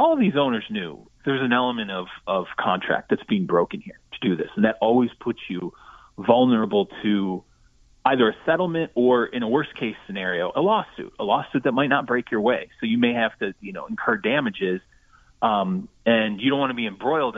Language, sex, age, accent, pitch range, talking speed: English, male, 30-49, American, 110-170 Hz, 205 wpm